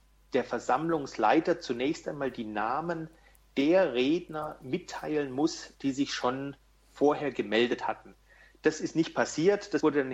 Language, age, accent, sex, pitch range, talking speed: German, 40-59, German, male, 130-185 Hz, 135 wpm